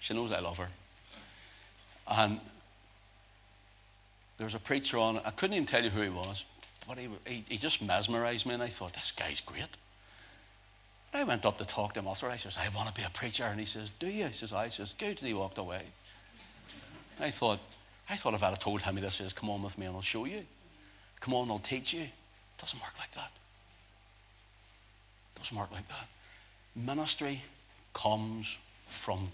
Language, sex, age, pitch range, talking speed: English, male, 60-79, 100-120 Hz, 205 wpm